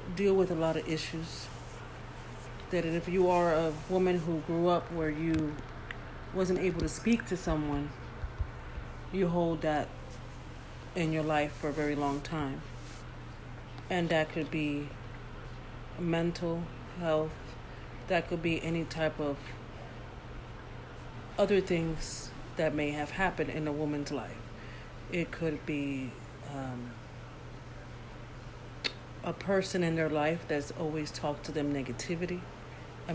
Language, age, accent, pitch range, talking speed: English, 40-59, American, 135-170 Hz, 130 wpm